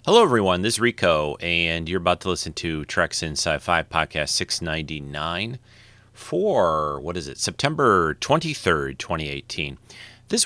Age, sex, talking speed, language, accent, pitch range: 40-59, male, 130 wpm, English, American, 85-115 Hz